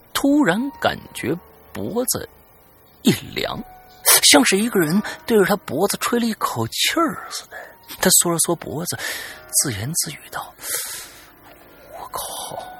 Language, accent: Chinese, native